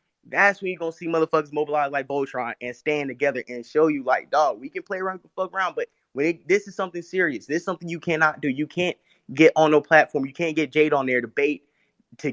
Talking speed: 255 wpm